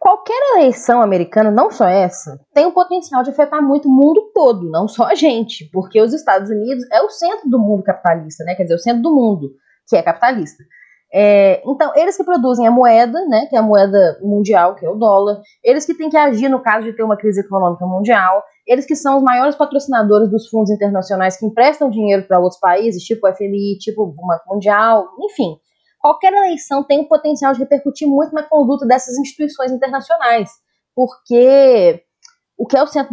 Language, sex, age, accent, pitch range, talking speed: Portuguese, female, 20-39, Brazilian, 200-285 Hz, 200 wpm